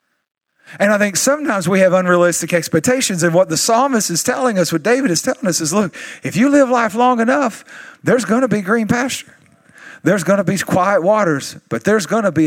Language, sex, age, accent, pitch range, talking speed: English, male, 40-59, American, 170-215 Hz, 215 wpm